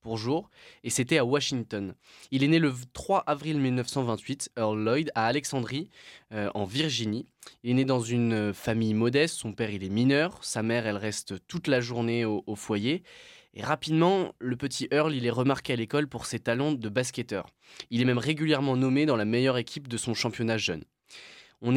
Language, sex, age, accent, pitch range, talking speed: French, male, 20-39, French, 110-140 Hz, 195 wpm